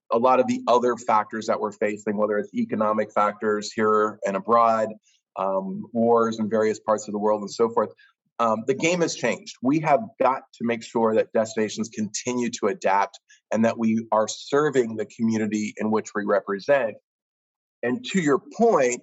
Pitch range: 110-130 Hz